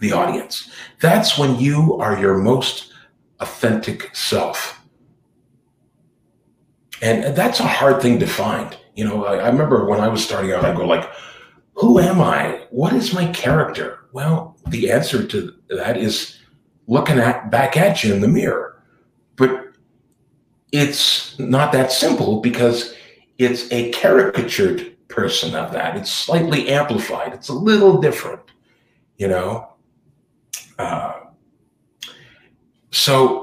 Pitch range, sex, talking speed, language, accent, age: 115-145 Hz, male, 130 wpm, English, American, 50-69